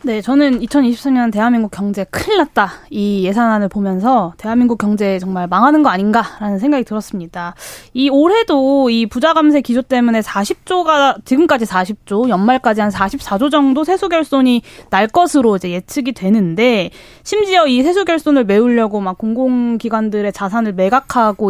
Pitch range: 210-285 Hz